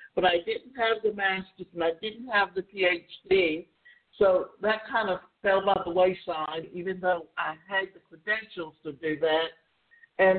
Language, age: English, 60-79